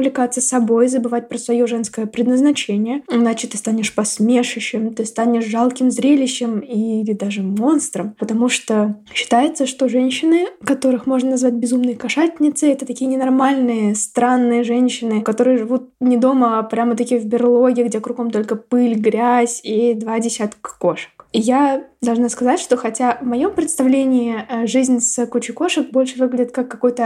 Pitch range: 230-260 Hz